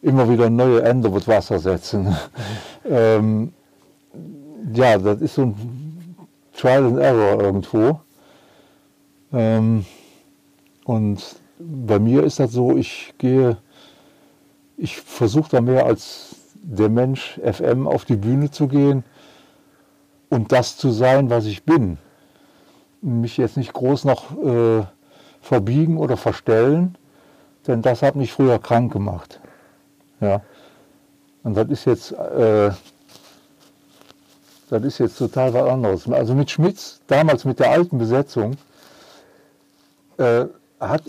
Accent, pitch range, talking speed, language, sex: German, 115-140 Hz, 125 wpm, German, male